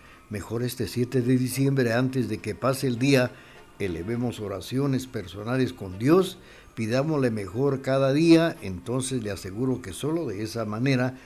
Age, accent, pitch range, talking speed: 60-79, Mexican, 105-140 Hz, 150 wpm